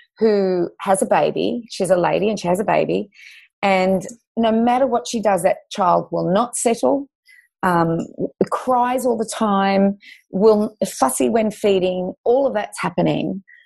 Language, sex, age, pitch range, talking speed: English, female, 30-49, 175-225 Hz, 160 wpm